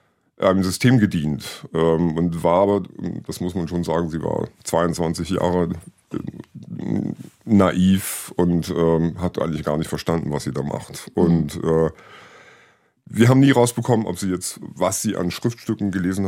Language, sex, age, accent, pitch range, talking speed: German, male, 50-69, German, 85-105 Hz, 160 wpm